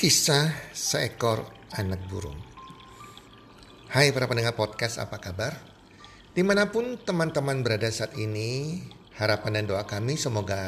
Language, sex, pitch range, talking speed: Indonesian, male, 105-135 Hz, 110 wpm